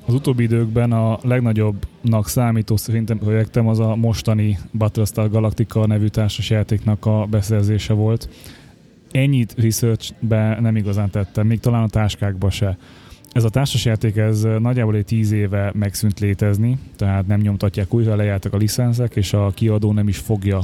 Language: Hungarian